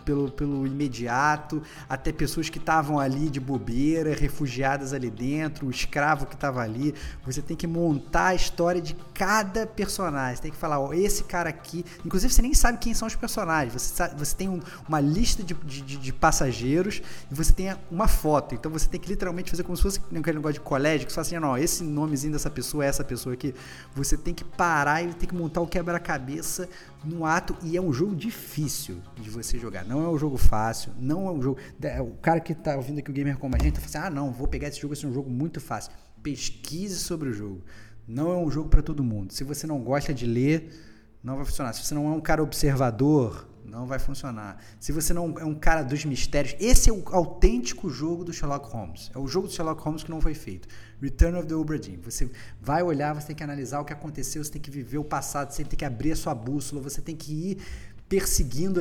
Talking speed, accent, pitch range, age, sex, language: 235 wpm, Brazilian, 135-170 Hz, 20-39, male, Portuguese